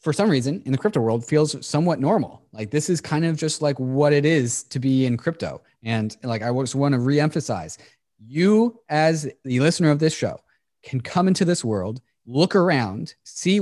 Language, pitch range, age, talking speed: English, 120-160 Hz, 20-39, 205 wpm